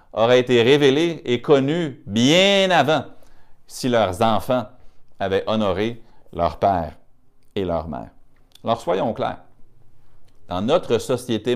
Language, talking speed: French, 120 wpm